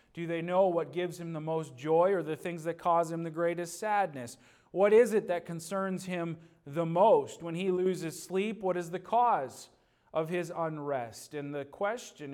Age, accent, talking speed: 40-59, American, 195 wpm